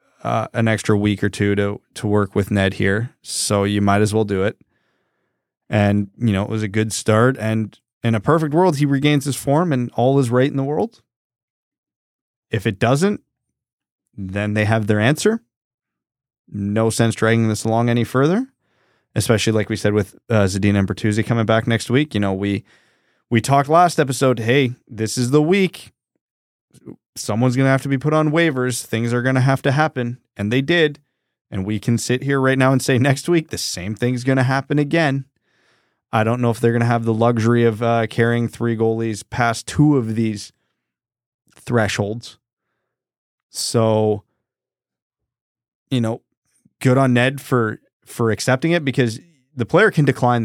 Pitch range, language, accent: 110-135 Hz, English, American